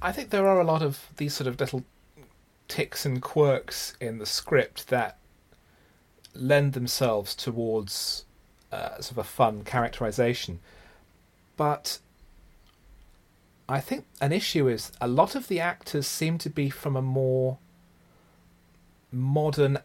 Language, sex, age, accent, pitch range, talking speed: English, male, 30-49, British, 110-140 Hz, 135 wpm